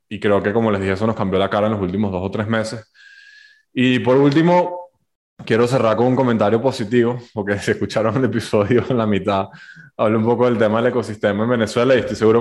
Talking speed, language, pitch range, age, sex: 230 wpm, Spanish, 105-125 Hz, 20-39, male